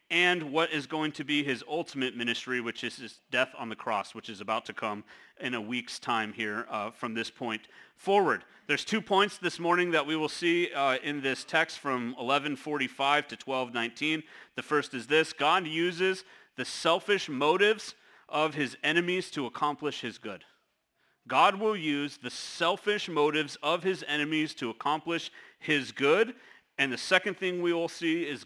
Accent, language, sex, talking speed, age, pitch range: American, English, male, 180 wpm, 40-59, 125-170 Hz